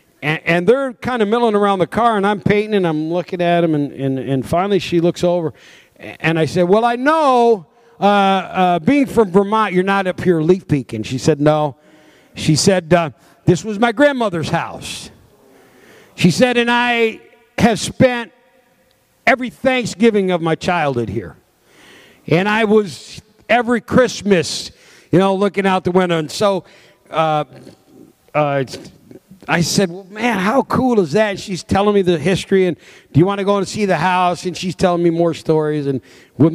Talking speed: 180 wpm